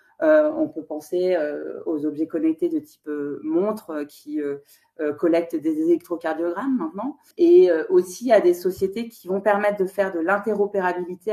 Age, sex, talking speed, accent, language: 30-49, female, 170 wpm, French, French